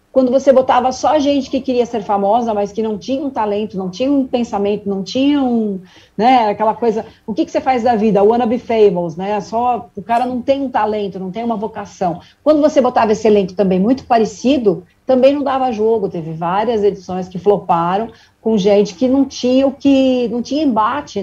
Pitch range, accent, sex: 205-260 Hz, Brazilian, female